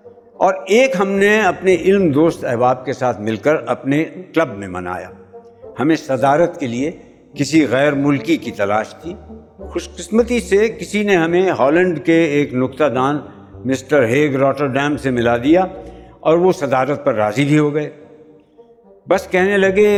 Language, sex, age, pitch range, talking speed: Urdu, male, 60-79, 125-185 Hz, 160 wpm